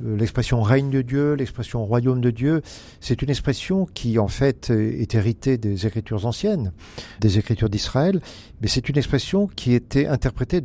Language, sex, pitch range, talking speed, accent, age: French, male, 115-140 Hz, 185 wpm, French, 50-69